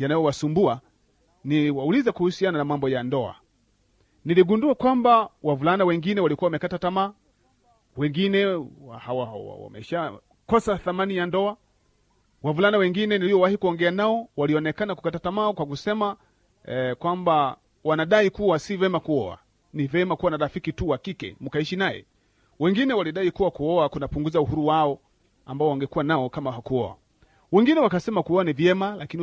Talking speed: 140 wpm